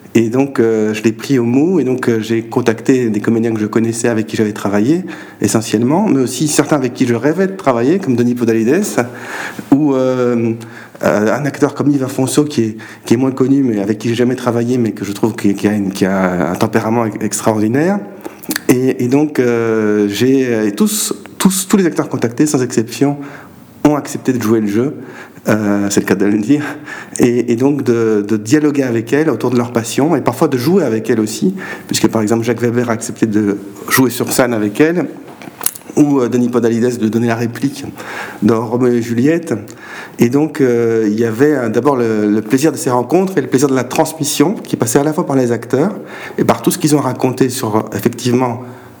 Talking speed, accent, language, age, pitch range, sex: 210 wpm, French, French, 40-59, 110-140 Hz, male